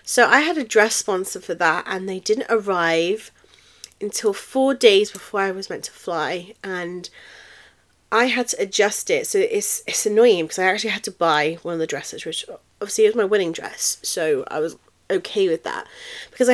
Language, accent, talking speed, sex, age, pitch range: English, British, 195 wpm, female, 30-49, 170-275 Hz